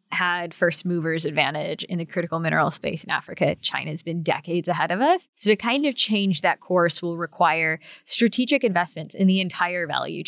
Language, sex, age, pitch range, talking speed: English, female, 20-39, 175-220 Hz, 185 wpm